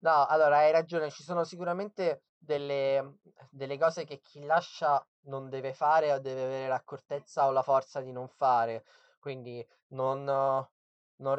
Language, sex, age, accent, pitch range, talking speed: Italian, male, 20-39, native, 135-160 Hz, 155 wpm